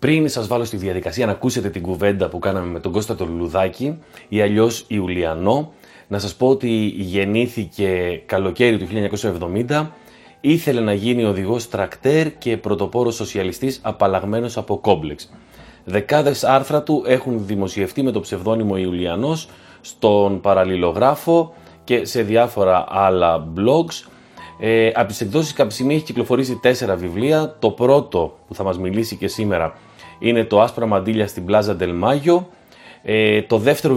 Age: 30-49